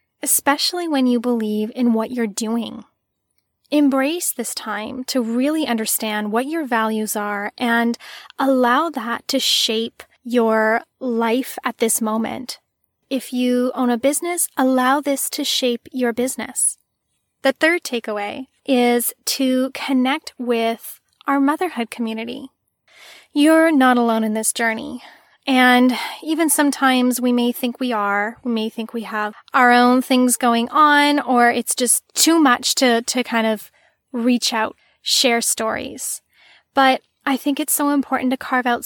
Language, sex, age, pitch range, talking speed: English, female, 10-29, 230-275 Hz, 145 wpm